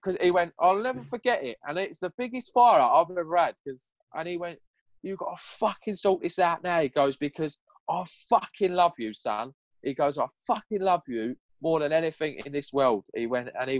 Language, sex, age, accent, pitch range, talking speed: English, male, 20-39, British, 135-175 Hz, 220 wpm